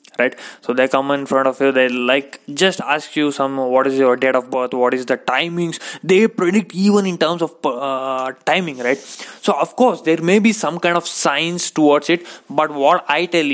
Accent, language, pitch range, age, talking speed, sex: Indian, English, 140-190 Hz, 20-39, 215 wpm, male